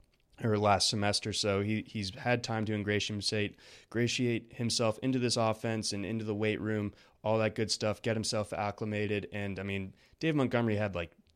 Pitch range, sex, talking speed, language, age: 95-110 Hz, male, 175 wpm, English, 20-39